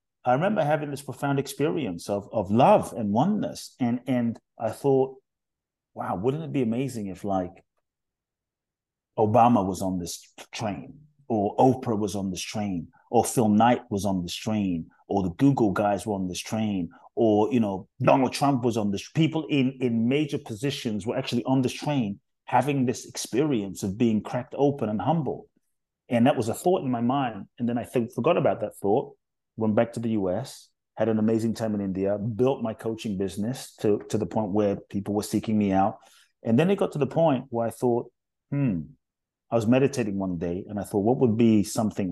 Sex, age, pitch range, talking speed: male, 30-49, 100-125 Hz, 200 wpm